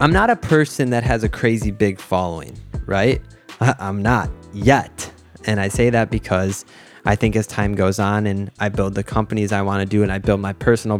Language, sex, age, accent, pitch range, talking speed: English, male, 20-39, American, 100-125 Hz, 215 wpm